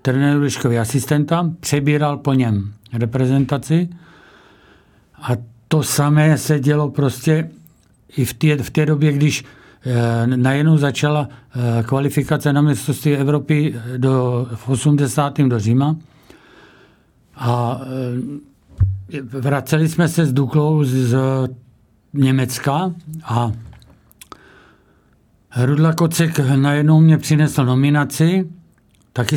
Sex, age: male, 50-69